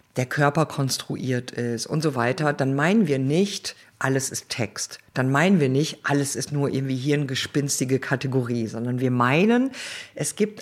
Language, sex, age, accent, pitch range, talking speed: German, female, 50-69, German, 135-185 Hz, 175 wpm